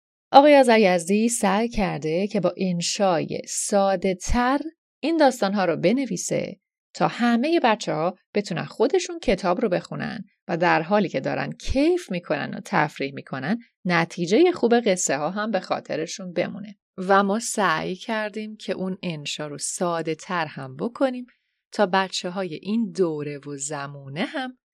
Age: 30-49